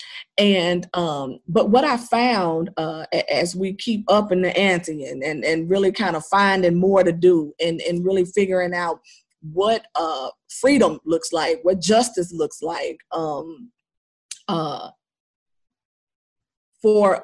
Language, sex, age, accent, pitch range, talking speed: English, female, 40-59, American, 175-235 Hz, 145 wpm